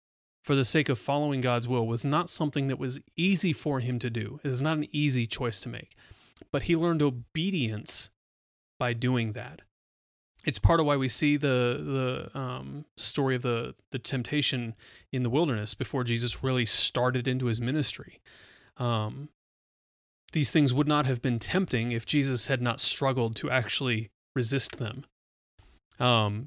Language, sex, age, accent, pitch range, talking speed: English, male, 30-49, American, 115-135 Hz, 170 wpm